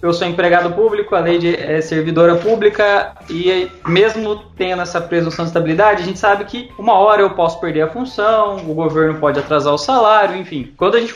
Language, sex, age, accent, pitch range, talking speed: Portuguese, male, 20-39, Brazilian, 145-185 Hz, 205 wpm